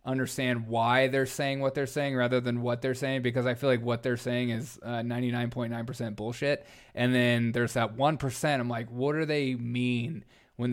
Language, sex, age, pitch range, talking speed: English, male, 20-39, 120-130 Hz, 200 wpm